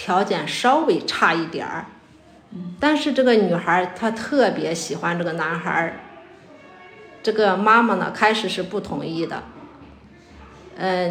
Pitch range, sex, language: 170-215 Hz, female, Chinese